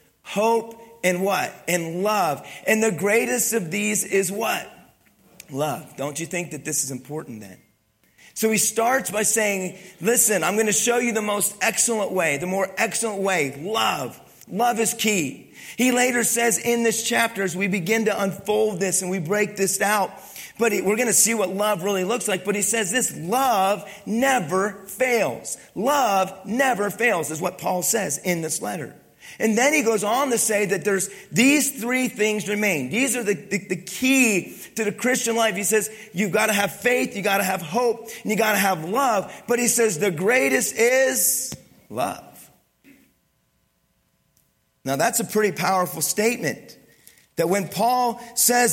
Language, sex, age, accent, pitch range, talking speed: English, male, 40-59, American, 190-230 Hz, 180 wpm